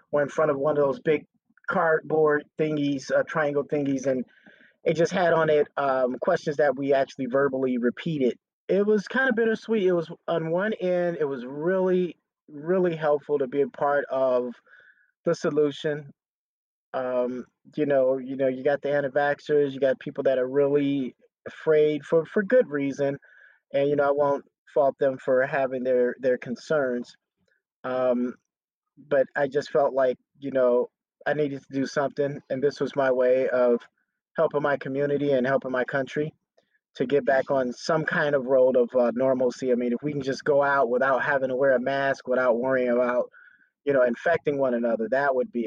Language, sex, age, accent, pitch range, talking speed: English, male, 30-49, American, 130-165 Hz, 190 wpm